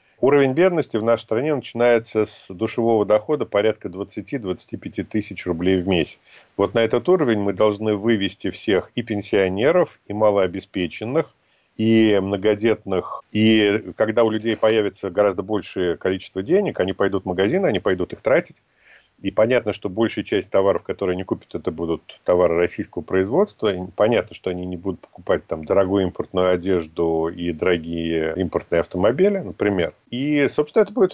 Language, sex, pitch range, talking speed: Russian, male, 95-120 Hz, 155 wpm